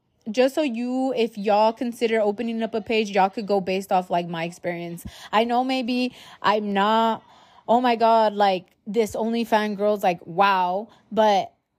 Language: English